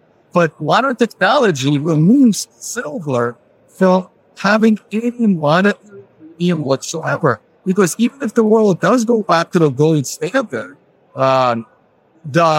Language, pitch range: English, 160-215 Hz